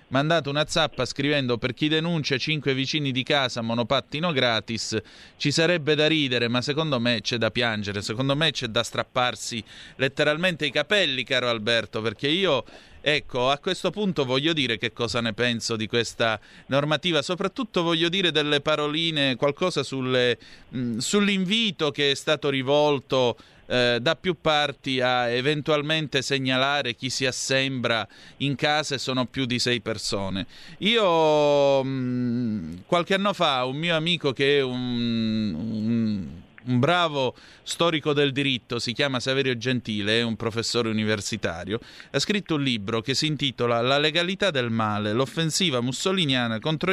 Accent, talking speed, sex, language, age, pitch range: native, 145 wpm, male, Italian, 30-49, 120-150 Hz